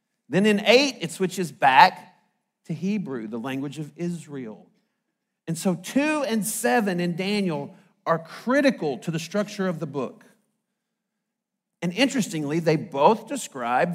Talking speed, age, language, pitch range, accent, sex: 140 wpm, 50-69, English, 180-225 Hz, American, male